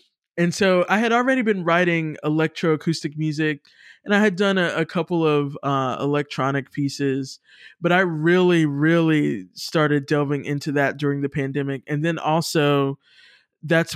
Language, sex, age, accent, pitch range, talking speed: English, male, 20-39, American, 140-155 Hz, 150 wpm